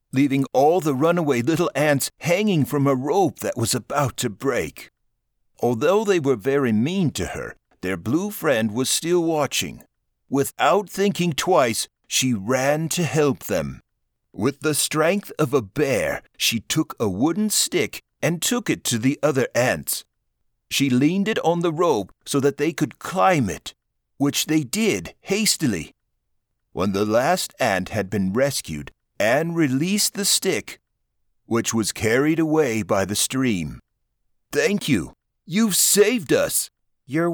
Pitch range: 120-175 Hz